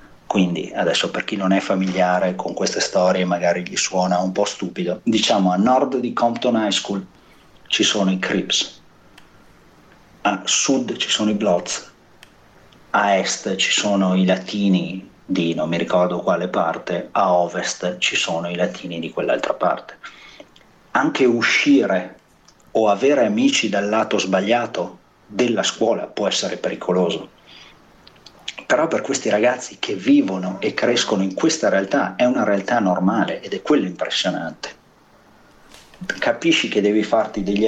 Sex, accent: male, native